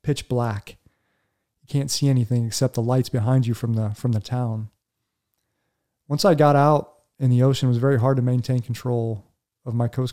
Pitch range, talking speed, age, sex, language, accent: 115-135 Hz, 195 wpm, 40-59, male, English, American